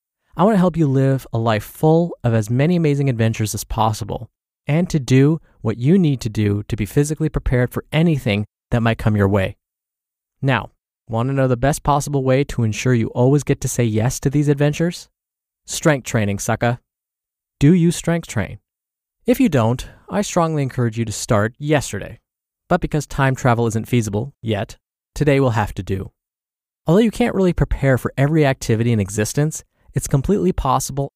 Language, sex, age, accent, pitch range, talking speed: English, male, 20-39, American, 115-155 Hz, 185 wpm